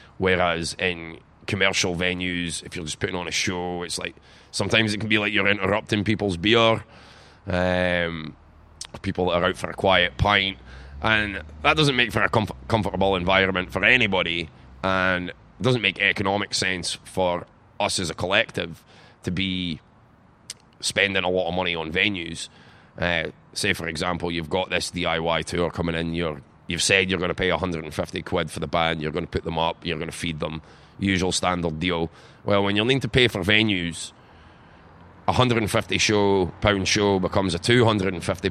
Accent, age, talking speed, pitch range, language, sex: British, 30-49, 175 wpm, 85-100 Hz, English, male